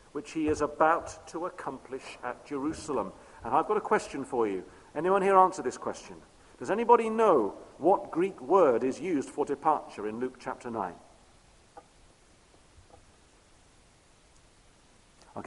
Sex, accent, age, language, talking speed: male, British, 50-69, English, 135 wpm